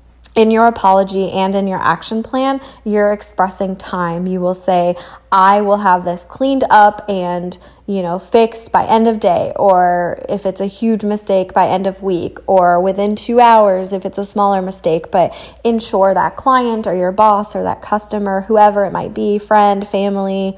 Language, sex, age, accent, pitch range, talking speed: English, female, 20-39, American, 185-215 Hz, 185 wpm